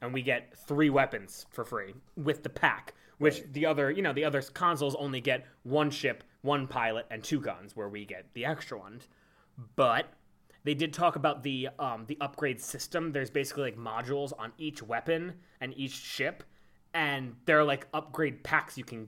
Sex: male